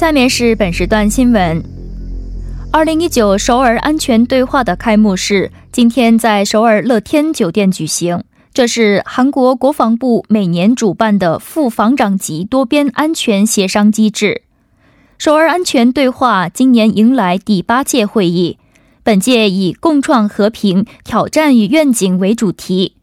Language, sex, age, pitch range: Korean, female, 20-39, 205-265 Hz